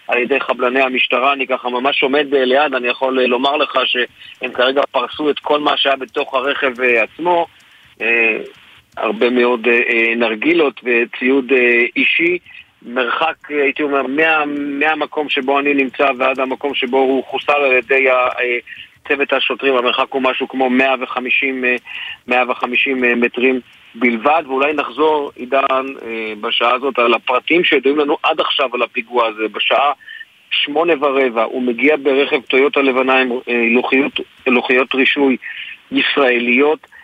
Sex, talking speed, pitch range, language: male, 125 wpm, 125-145 Hz, Hebrew